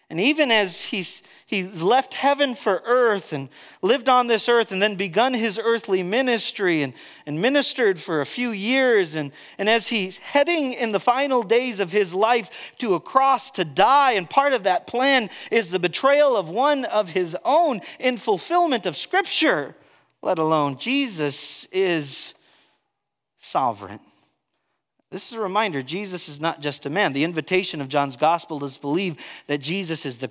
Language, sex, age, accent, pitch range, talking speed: English, male, 40-59, American, 145-230 Hz, 175 wpm